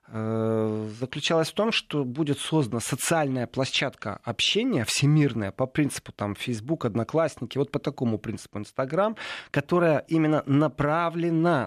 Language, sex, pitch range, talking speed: Russian, male, 120-170 Hz, 120 wpm